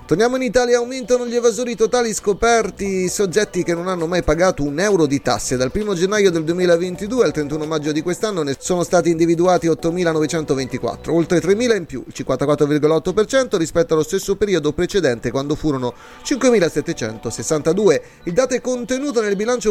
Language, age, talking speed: Italian, 30-49, 160 wpm